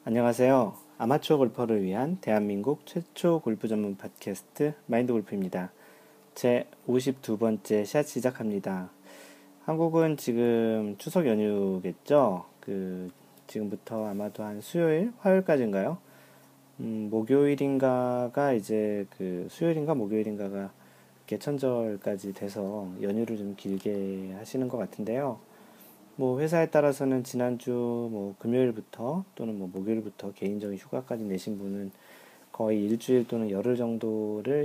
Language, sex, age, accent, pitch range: Korean, male, 40-59, native, 100-135 Hz